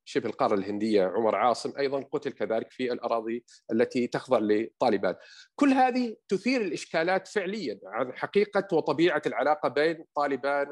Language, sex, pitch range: Arabic, male, 130-185 Hz